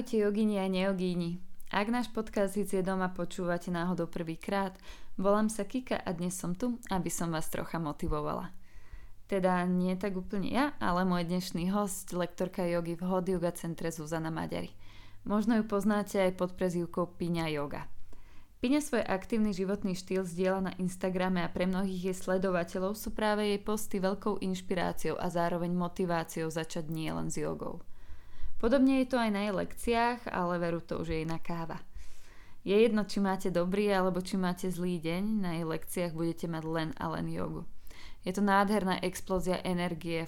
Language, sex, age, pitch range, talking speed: Slovak, female, 20-39, 170-200 Hz, 165 wpm